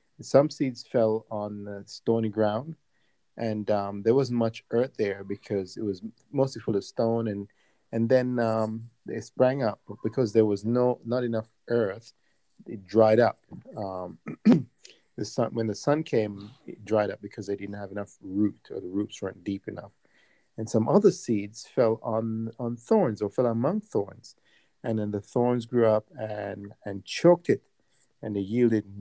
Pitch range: 105-125 Hz